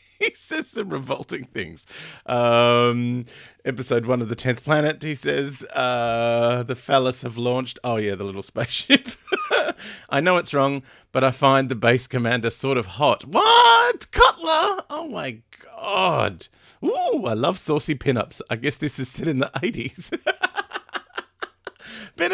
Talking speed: 150 wpm